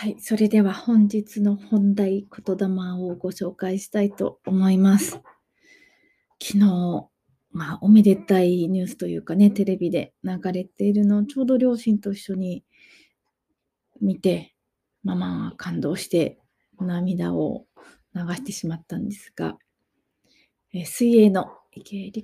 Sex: female